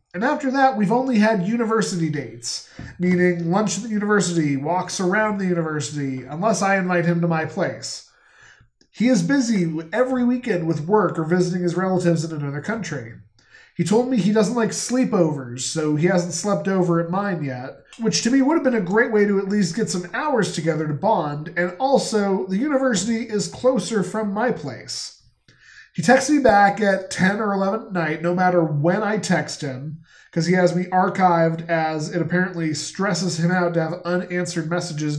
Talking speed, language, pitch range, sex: 190 wpm, English, 165-215 Hz, male